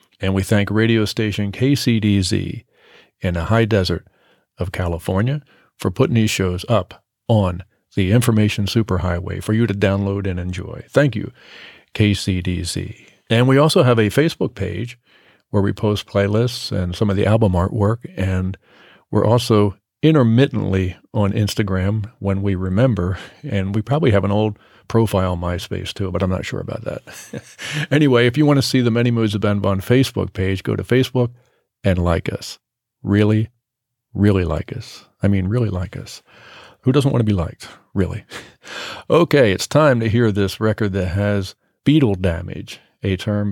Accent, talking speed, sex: American, 165 wpm, male